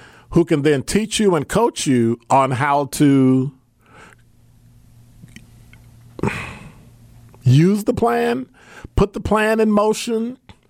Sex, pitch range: male, 115-165 Hz